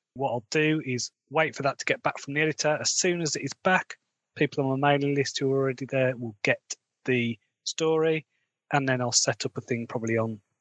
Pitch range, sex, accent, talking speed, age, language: 115-150 Hz, male, British, 230 wpm, 30-49, English